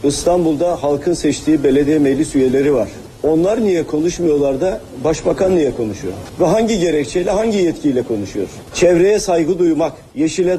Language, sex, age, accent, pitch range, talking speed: Turkish, male, 40-59, native, 145-185 Hz, 135 wpm